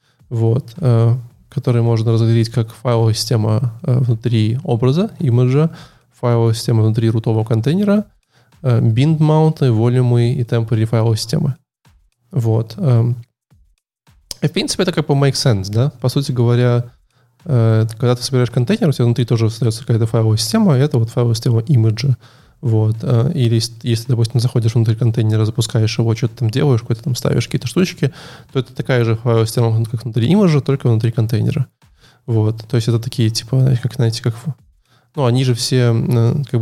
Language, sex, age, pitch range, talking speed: Russian, male, 20-39, 115-130 Hz, 165 wpm